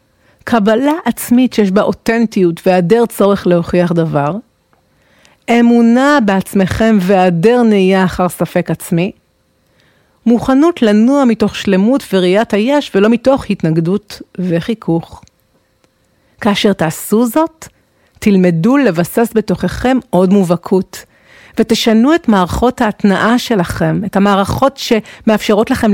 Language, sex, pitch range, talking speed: Hebrew, female, 185-235 Hz, 100 wpm